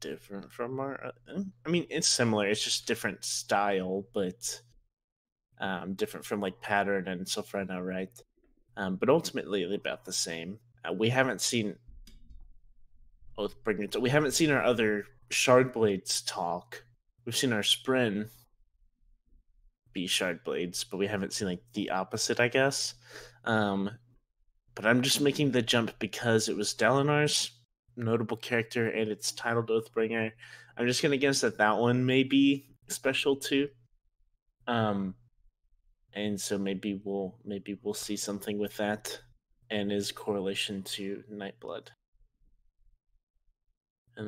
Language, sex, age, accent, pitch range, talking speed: English, male, 20-39, American, 95-120 Hz, 140 wpm